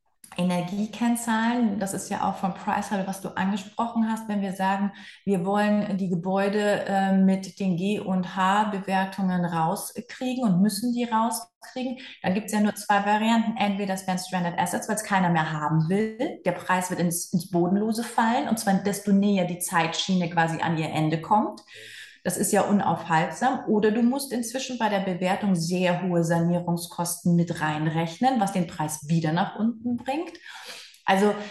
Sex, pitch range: female, 185-225 Hz